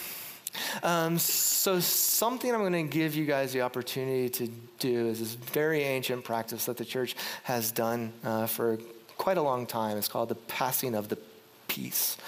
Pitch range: 120-170 Hz